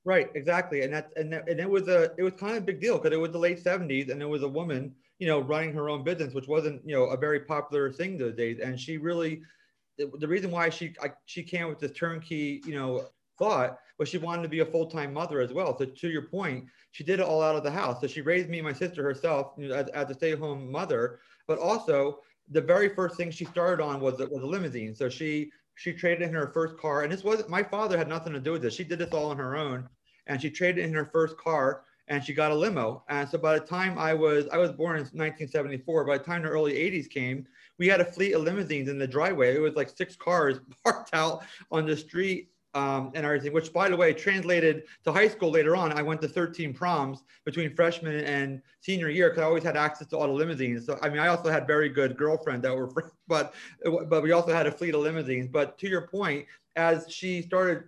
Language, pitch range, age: English, 145-175 Hz, 30-49